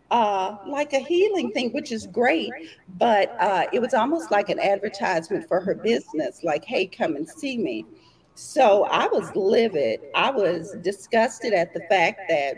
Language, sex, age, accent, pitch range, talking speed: English, female, 40-59, American, 190-295 Hz, 170 wpm